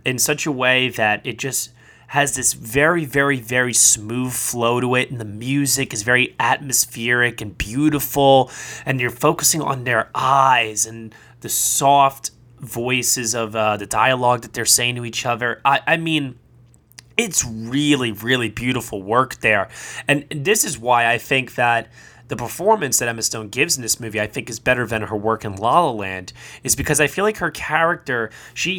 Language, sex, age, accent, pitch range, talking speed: English, male, 20-39, American, 115-145 Hz, 185 wpm